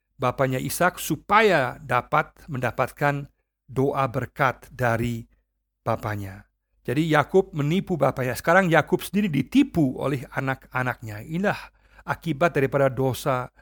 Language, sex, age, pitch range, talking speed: Indonesian, male, 50-69, 130-160 Hz, 100 wpm